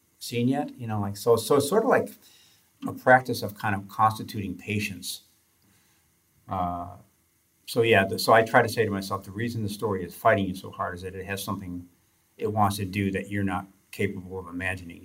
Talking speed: 205 wpm